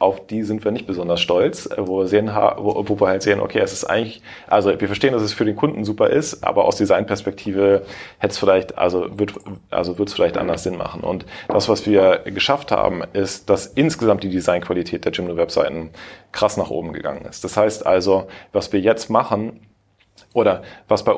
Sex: male